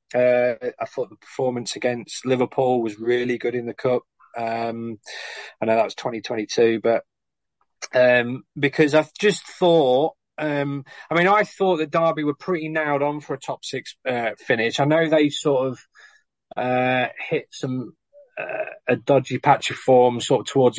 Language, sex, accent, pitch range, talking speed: English, male, British, 120-155 Hz, 170 wpm